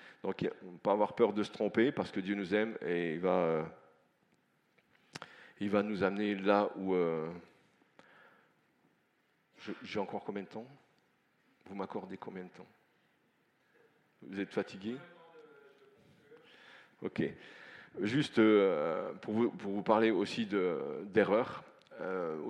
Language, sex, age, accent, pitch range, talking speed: French, male, 40-59, French, 95-115 Hz, 130 wpm